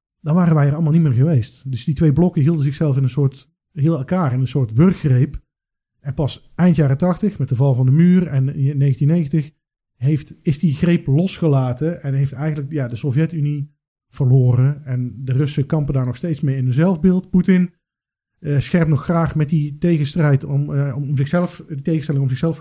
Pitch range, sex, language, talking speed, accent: 135-165 Hz, male, Dutch, 200 wpm, Dutch